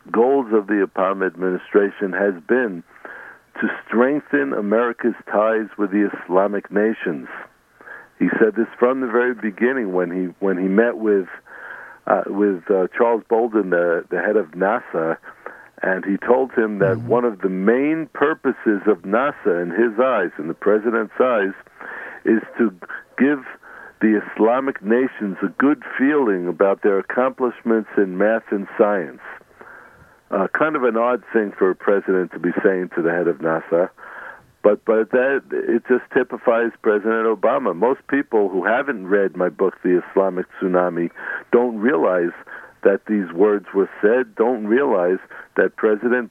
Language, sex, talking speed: English, male, 155 wpm